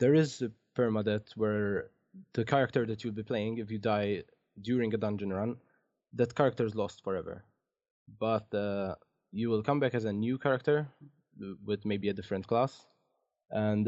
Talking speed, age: 170 wpm, 20-39